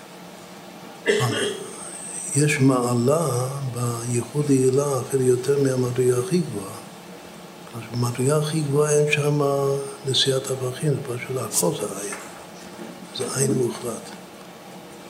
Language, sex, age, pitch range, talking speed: Hebrew, male, 60-79, 130-180 Hz, 95 wpm